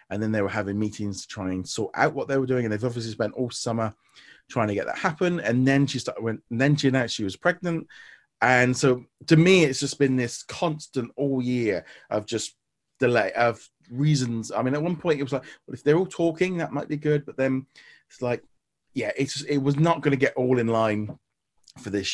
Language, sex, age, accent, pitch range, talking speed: English, male, 30-49, British, 115-145 Hz, 240 wpm